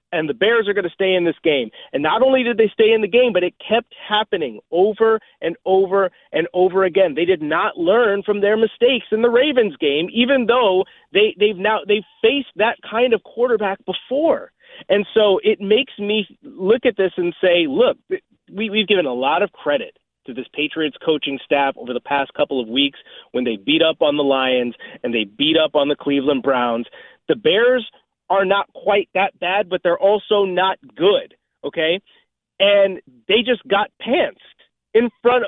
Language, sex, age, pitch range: English, male, 30-49, 160-225 Hz